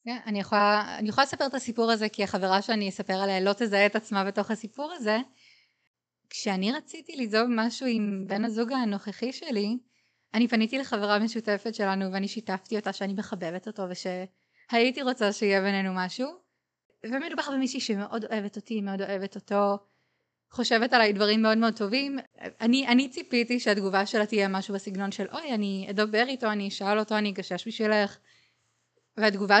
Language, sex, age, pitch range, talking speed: Hebrew, female, 20-39, 200-235 Hz, 165 wpm